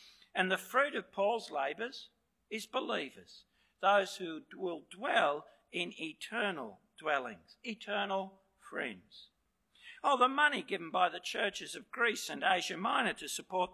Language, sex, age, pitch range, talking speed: English, male, 60-79, 190-250 Hz, 135 wpm